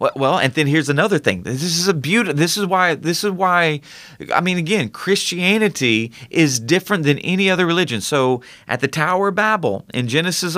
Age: 30-49